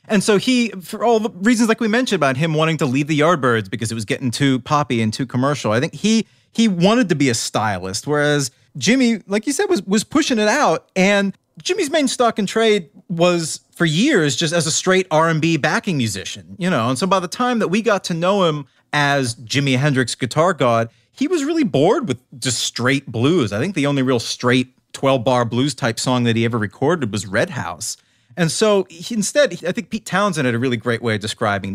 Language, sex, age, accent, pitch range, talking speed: English, male, 30-49, American, 125-200 Hz, 225 wpm